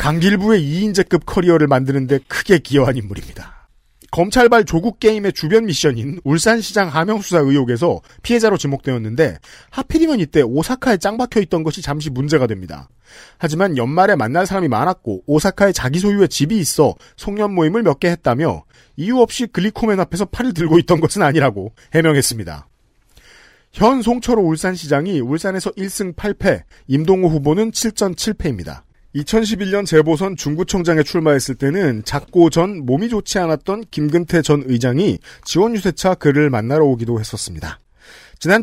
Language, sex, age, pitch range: Korean, male, 40-59, 145-200 Hz